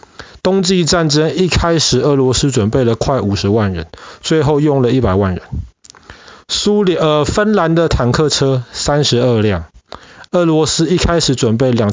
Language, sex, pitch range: Chinese, male, 115-155 Hz